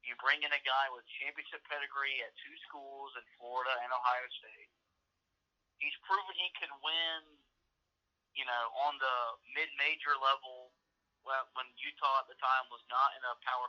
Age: 40-59